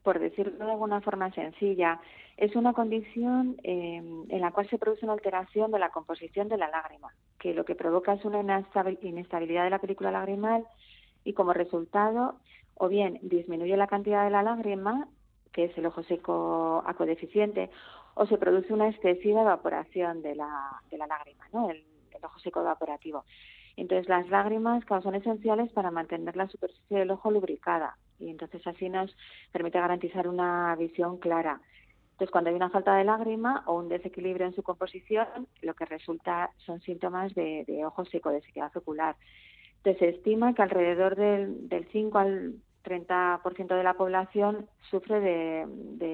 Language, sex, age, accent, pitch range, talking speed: Spanish, female, 40-59, Spanish, 170-205 Hz, 165 wpm